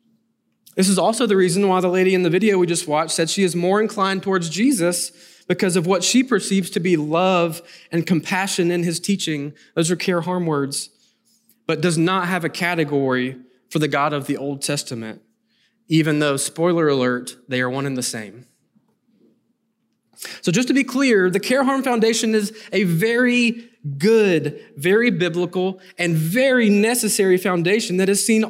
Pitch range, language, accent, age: 165-225 Hz, English, American, 20-39